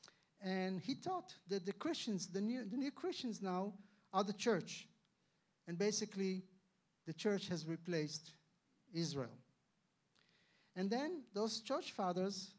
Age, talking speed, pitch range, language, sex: 50-69, 125 wpm, 175-215 Hz, English, male